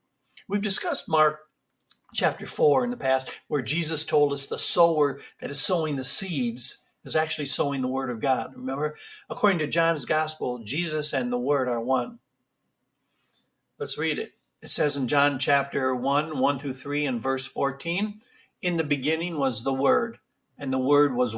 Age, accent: 60-79, American